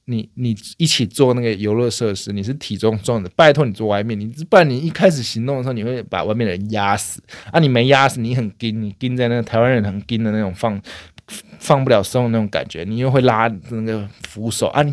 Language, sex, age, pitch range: Chinese, male, 20-39, 105-140 Hz